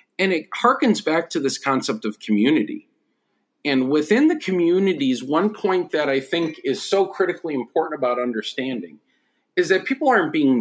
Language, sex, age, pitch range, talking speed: English, male, 40-59, 130-195 Hz, 165 wpm